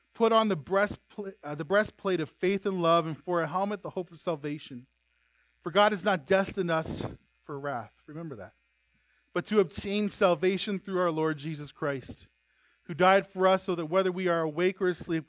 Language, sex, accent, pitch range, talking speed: English, male, American, 155-205 Hz, 190 wpm